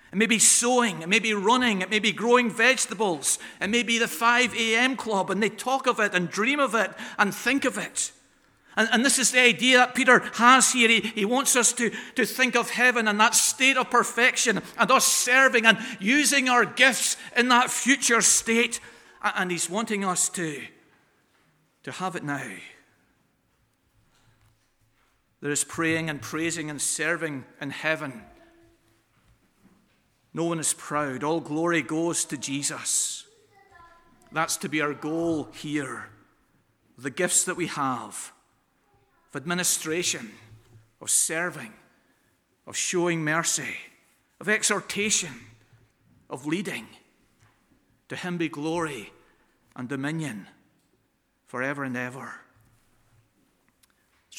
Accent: British